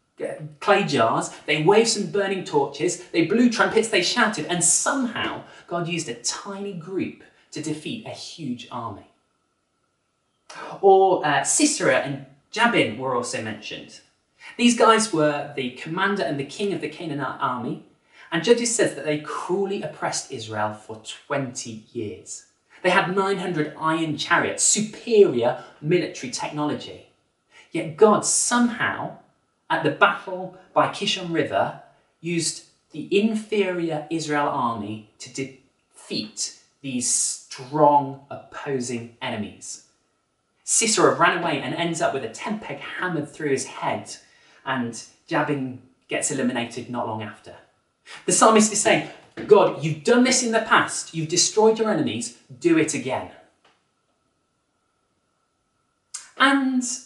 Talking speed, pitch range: 130 wpm, 140-210 Hz